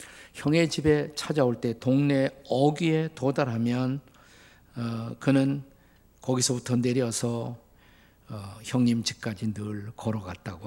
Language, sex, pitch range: Korean, male, 110-145 Hz